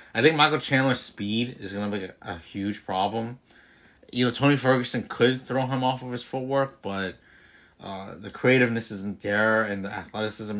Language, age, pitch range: English, 30-49, 105-130 Hz